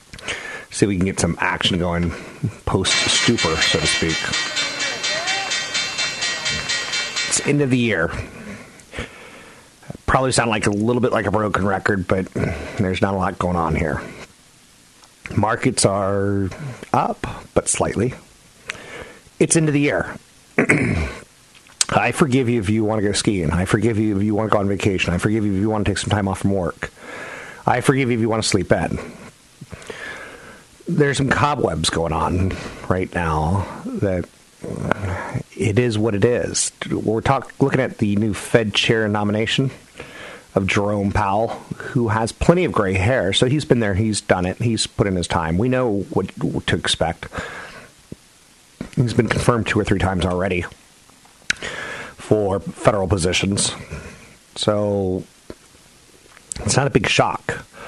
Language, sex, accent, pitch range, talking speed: English, male, American, 95-120 Hz, 155 wpm